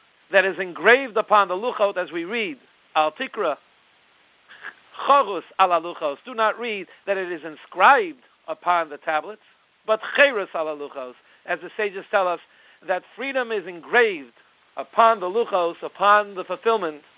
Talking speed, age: 140 wpm, 50-69